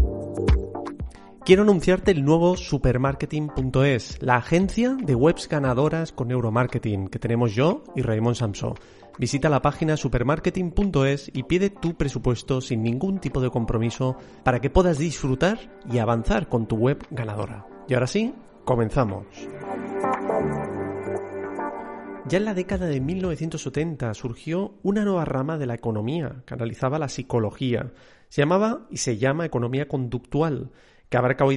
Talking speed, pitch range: 135 wpm, 120-165 Hz